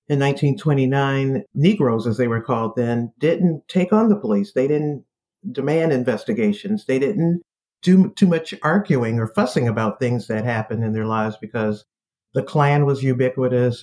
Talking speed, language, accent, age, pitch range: 160 wpm, English, American, 50-69, 120-155 Hz